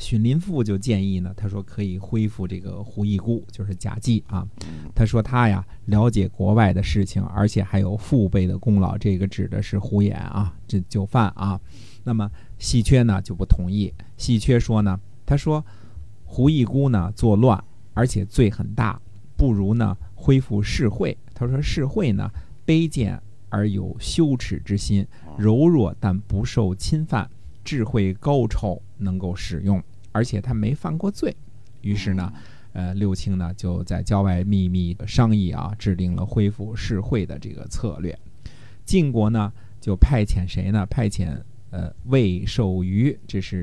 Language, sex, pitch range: Chinese, male, 95-115 Hz